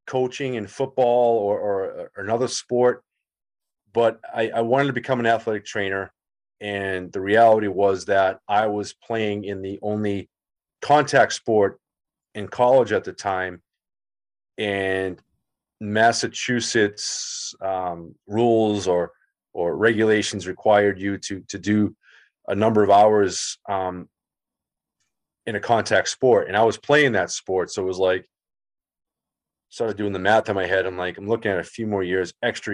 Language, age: English, 30-49